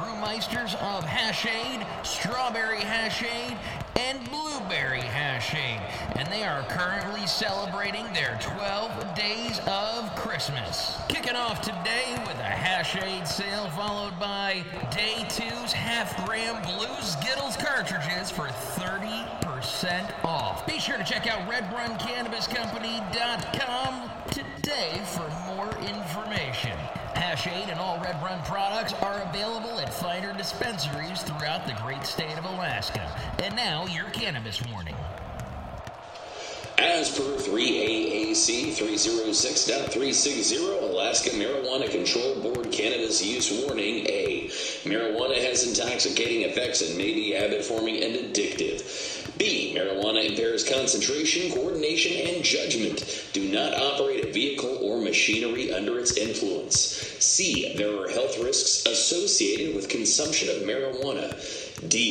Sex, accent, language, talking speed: male, American, English, 115 wpm